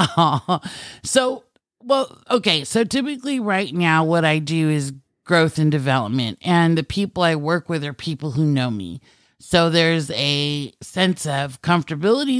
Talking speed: 150 wpm